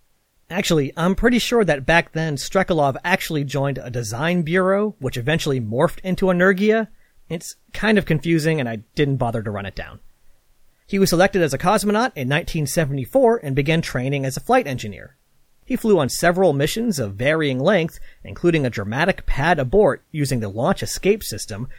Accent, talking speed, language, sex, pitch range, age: American, 175 wpm, English, male, 130-190 Hz, 40-59